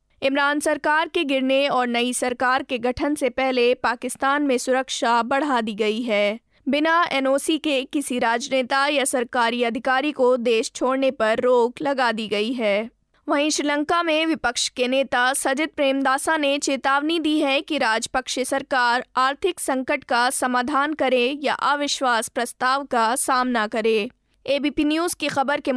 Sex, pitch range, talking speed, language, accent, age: female, 245-290 Hz, 155 wpm, Hindi, native, 20-39